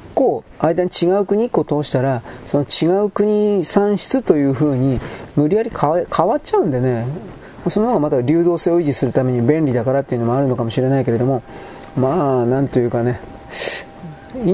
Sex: male